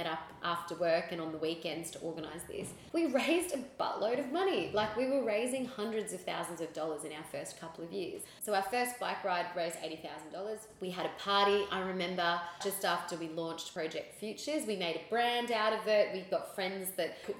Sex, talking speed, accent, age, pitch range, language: female, 220 wpm, Australian, 20-39, 165-195 Hz, English